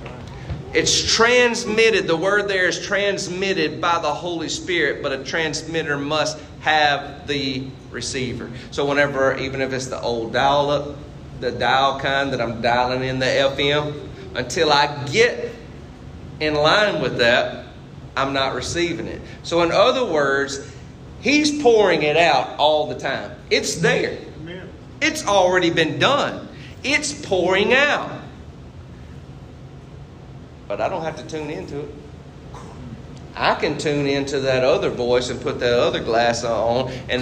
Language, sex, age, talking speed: English, male, 40-59, 145 wpm